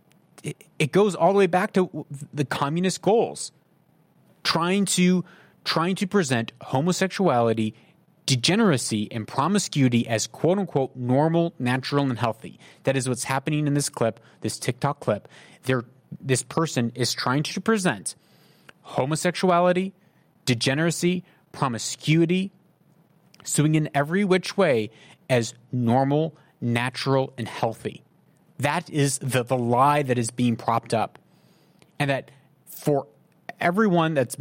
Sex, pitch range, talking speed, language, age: male, 125-170 Hz, 120 wpm, English, 30-49